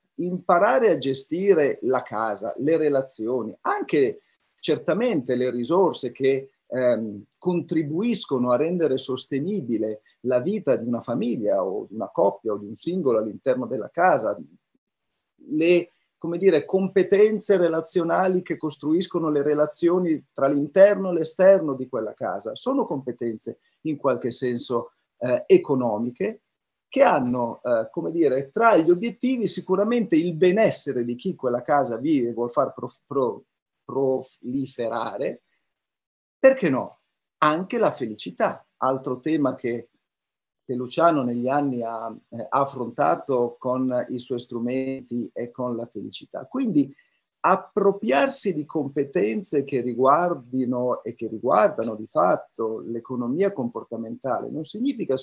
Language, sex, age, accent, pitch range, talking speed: Italian, male, 40-59, native, 125-185 Hz, 120 wpm